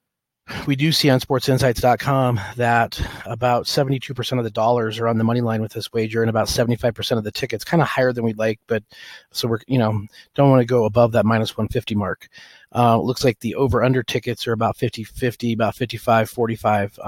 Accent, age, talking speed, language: American, 30-49, 200 wpm, English